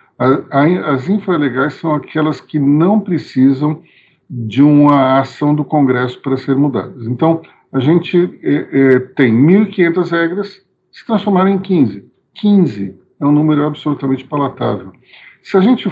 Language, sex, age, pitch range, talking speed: Portuguese, male, 50-69, 140-200 Hz, 135 wpm